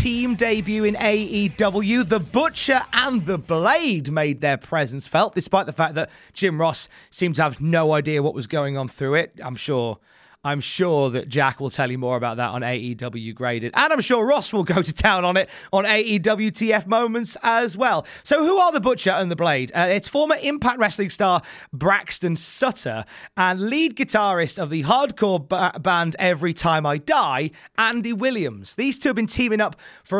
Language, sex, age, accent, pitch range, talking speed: English, male, 30-49, British, 150-215 Hz, 195 wpm